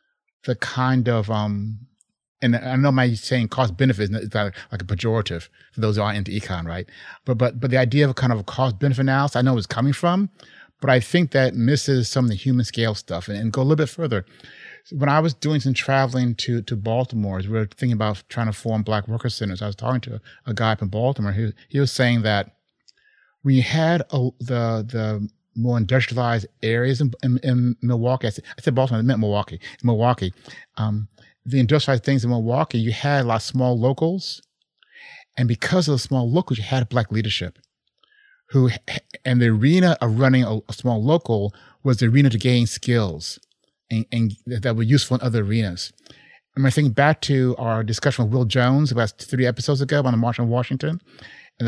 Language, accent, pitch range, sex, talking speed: English, American, 110-135 Hz, male, 210 wpm